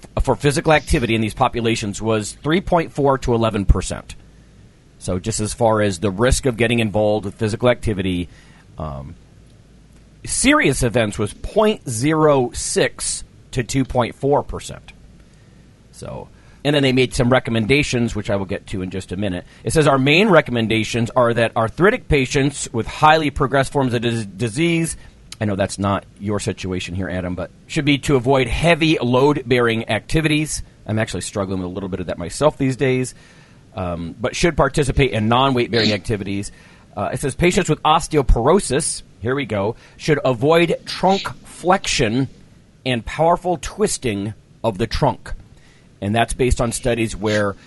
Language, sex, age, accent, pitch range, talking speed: English, male, 40-59, American, 105-145 Hz, 150 wpm